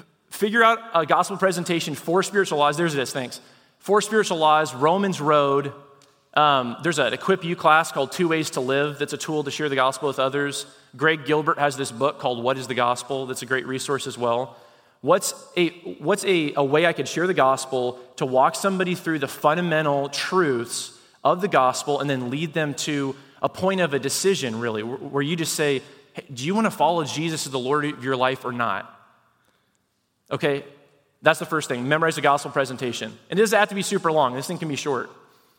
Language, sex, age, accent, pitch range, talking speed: English, male, 30-49, American, 135-180 Hz, 205 wpm